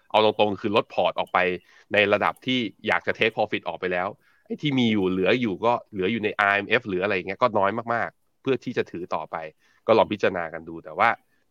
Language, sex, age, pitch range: Thai, male, 20-39, 95-120 Hz